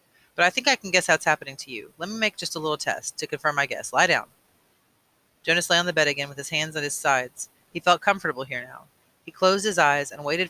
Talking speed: 270 wpm